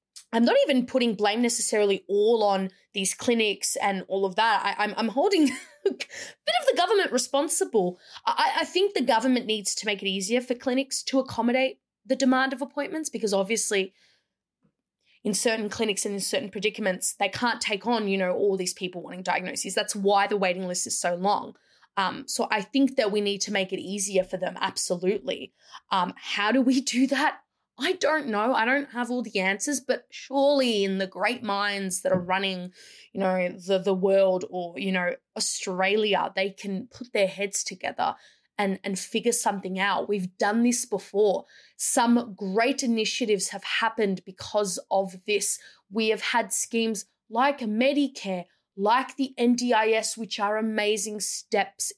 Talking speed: 175 wpm